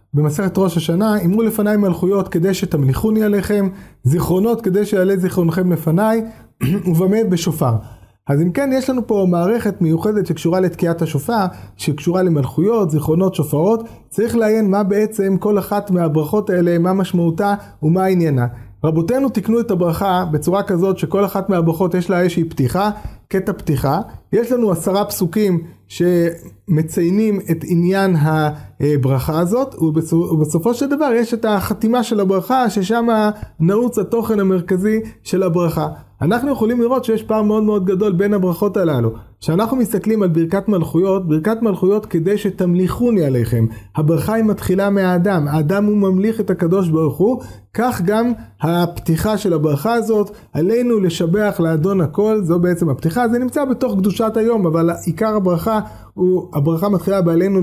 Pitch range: 170-210 Hz